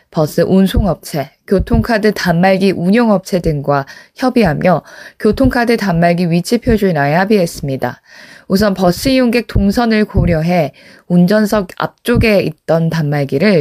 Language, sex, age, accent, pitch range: Korean, female, 20-39, native, 155-215 Hz